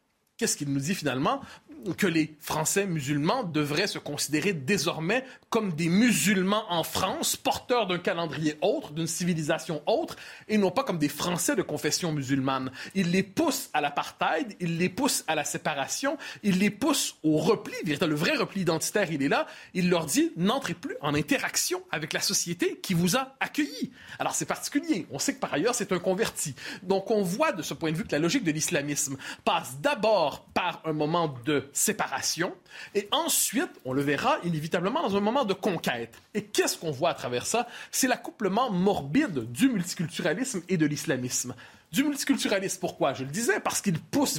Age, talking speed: 30-49, 185 wpm